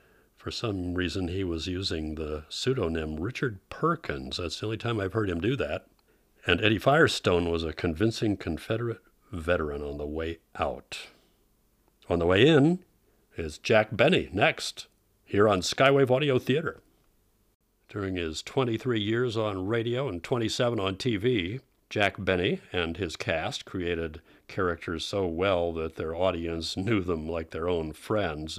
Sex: male